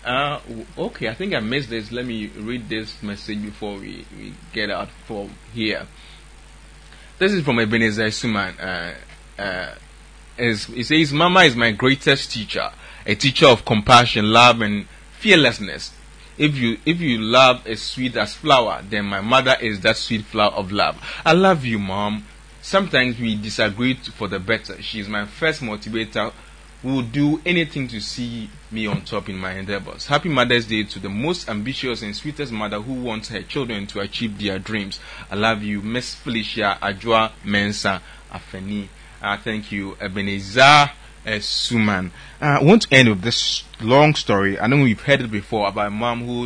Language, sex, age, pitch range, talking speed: English, male, 30-49, 105-125 Hz, 175 wpm